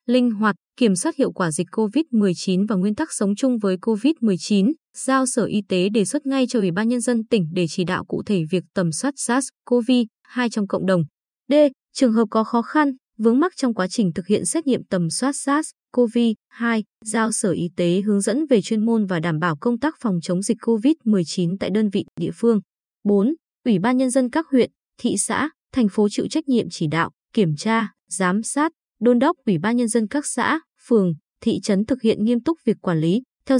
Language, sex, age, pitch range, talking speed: Vietnamese, female, 20-39, 190-255 Hz, 215 wpm